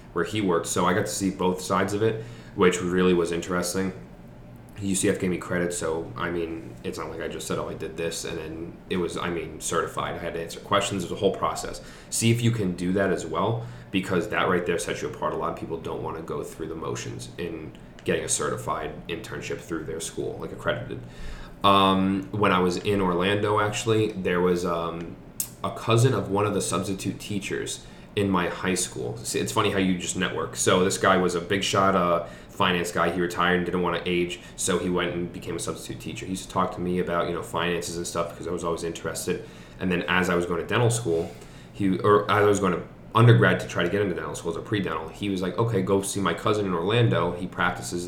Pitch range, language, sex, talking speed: 85-95 Hz, English, male, 245 wpm